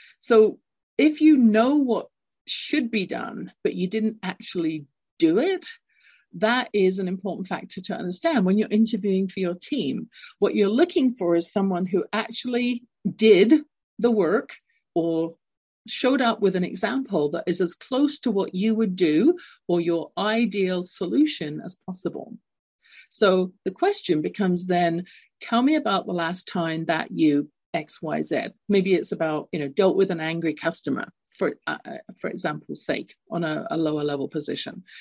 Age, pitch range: 40-59, 180-245 Hz